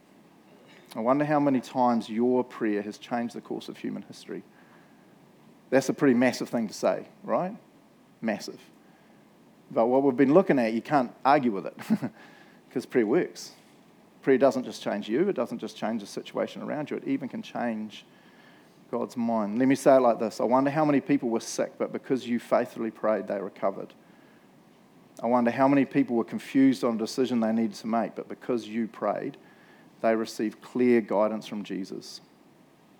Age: 40-59